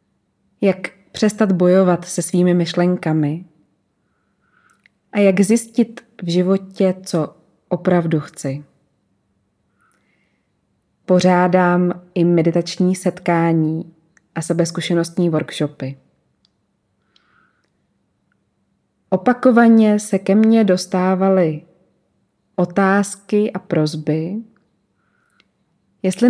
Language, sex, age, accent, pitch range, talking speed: Czech, female, 20-39, native, 170-200 Hz, 70 wpm